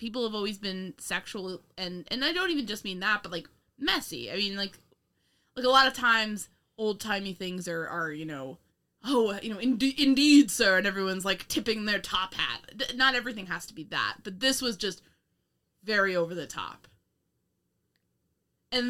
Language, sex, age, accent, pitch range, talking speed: English, female, 20-39, American, 180-230 Hz, 190 wpm